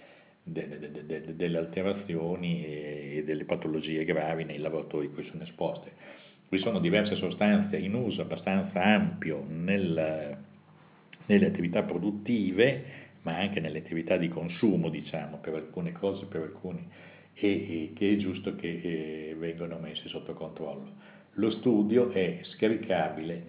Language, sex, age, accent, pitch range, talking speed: Italian, male, 50-69, native, 80-120 Hz, 125 wpm